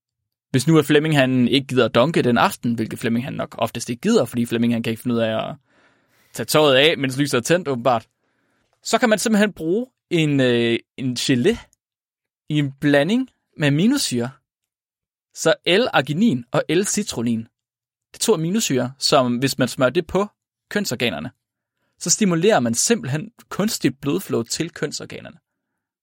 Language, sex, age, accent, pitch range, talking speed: Danish, male, 20-39, native, 120-155 Hz, 165 wpm